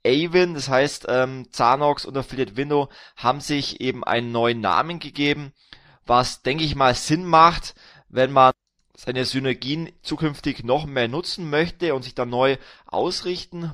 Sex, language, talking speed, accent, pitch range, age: male, German, 150 wpm, German, 125-145 Hz, 20-39